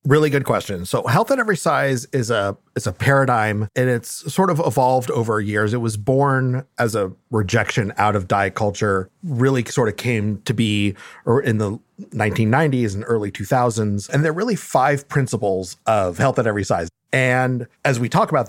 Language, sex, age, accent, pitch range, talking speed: English, male, 40-59, American, 110-145 Hz, 190 wpm